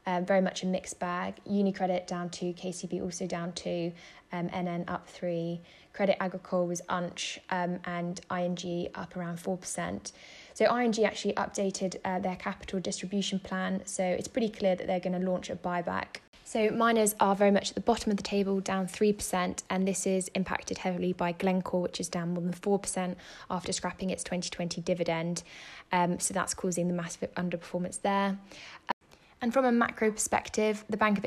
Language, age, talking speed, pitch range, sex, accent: English, 10-29, 180 wpm, 180-205 Hz, female, British